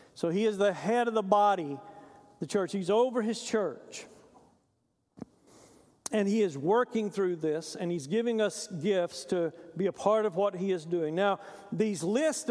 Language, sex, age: English, male, 50-69